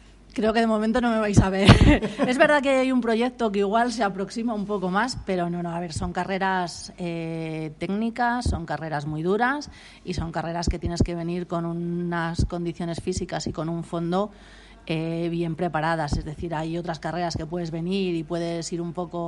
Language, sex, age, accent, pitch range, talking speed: Spanish, female, 30-49, Spanish, 160-185 Hz, 205 wpm